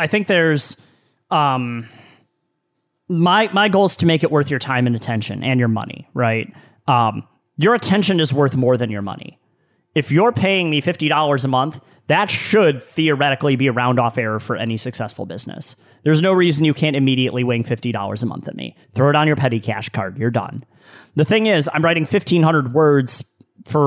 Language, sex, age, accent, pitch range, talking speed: English, male, 30-49, American, 120-155 Hz, 190 wpm